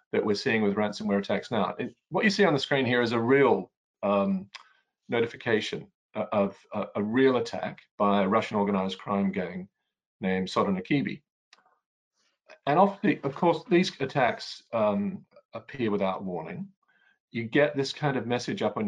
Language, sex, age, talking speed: English, male, 40-59, 160 wpm